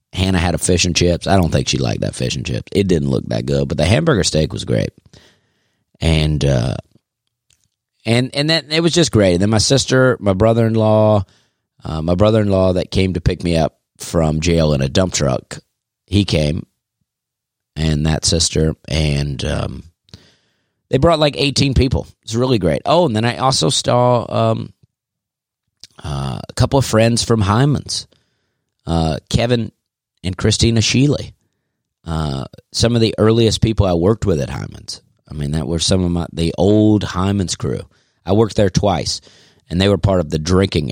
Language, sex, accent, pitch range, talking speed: English, male, American, 80-115 Hz, 185 wpm